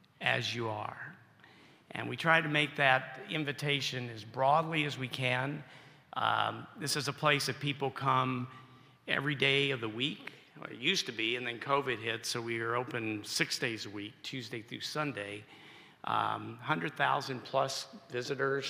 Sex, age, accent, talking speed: male, 50-69, American, 165 wpm